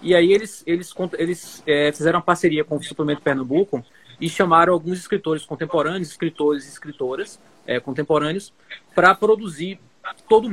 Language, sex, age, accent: Portuguese, male, 20-39, Brazilian